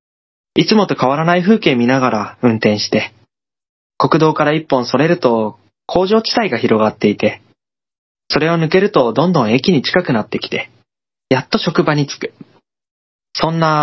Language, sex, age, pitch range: Japanese, male, 20-39, 115-170 Hz